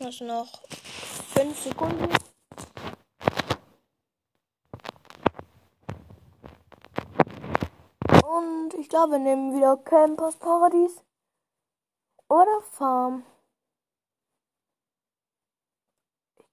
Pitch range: 250-310 Hz